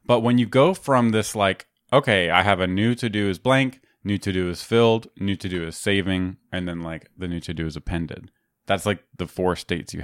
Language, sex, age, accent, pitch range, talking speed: English, male, 30-49, American, 85-110 Hz, 245 wpm